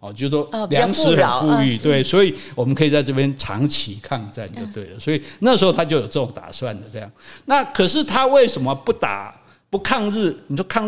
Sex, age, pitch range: male, 50-69, 130-195 Hz